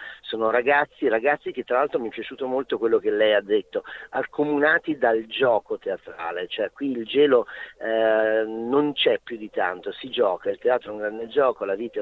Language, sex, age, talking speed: Italian, male, 40-59, 200 wpm